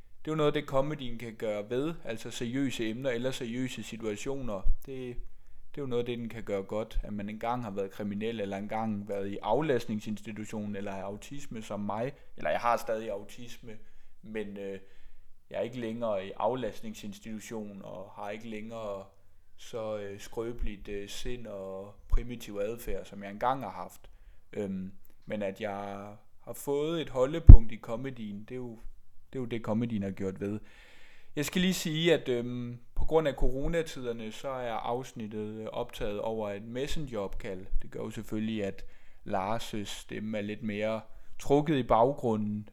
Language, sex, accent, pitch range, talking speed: Danish, male, native, 100-125 Hz, 165 wpm